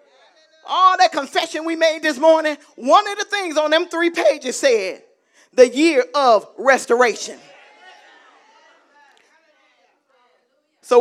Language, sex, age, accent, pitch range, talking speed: English, male, 40-59, American, 280-360 Hz, 115 wpm